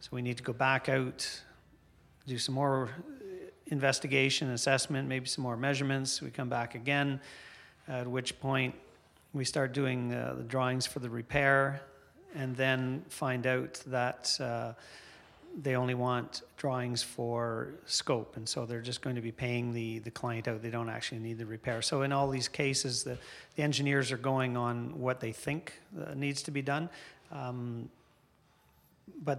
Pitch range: 120-140 Hz